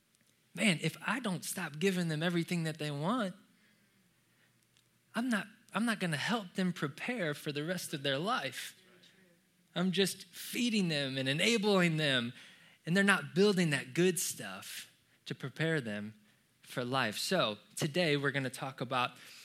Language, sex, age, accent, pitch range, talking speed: English, male, 20-39, American, 130-185 Hz, 150 wpm